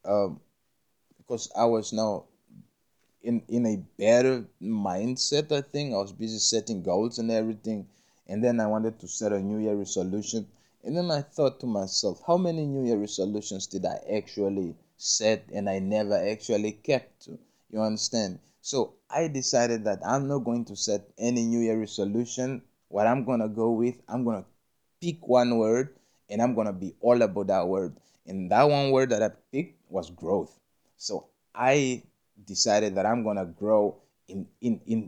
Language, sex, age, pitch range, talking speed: English, male, 20-39, 100-125 Hz, 180 wpm